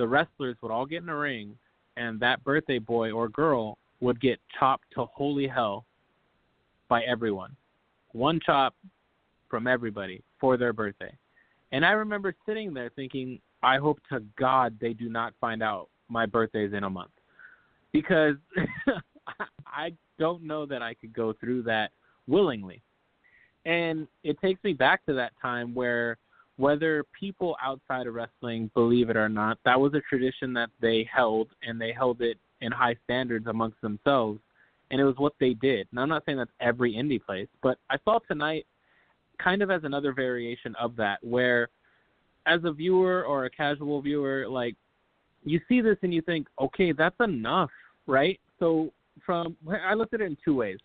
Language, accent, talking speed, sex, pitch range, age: English, American, 175 wpm, male, 115-160 Hz, 20-39